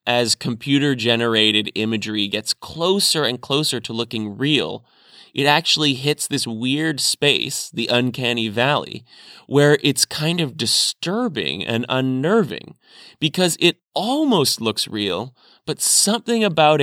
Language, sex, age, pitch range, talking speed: English, male, 20-39, 115-150 Hz, 120 wpm